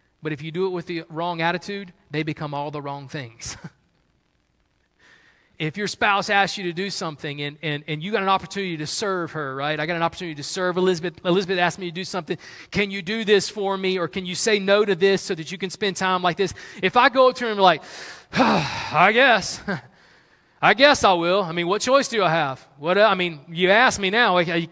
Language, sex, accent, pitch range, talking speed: English, male, American, 160-205 Hz, 245 wpm